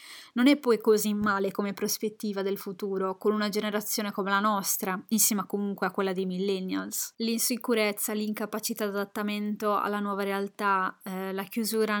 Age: 20-39